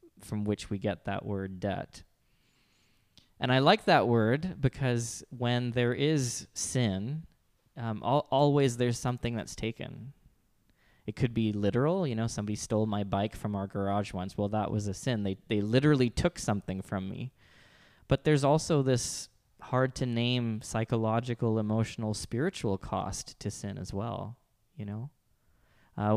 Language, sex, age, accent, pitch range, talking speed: English, male, 20-39, American, 100-120 Hz, 155 wpm